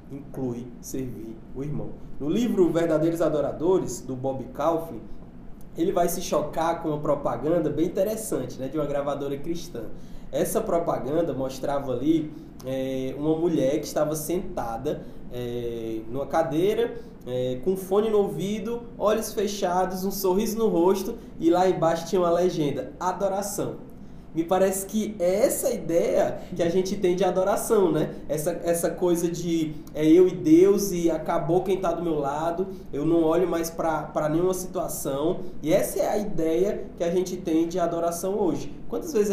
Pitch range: 150-185 Hz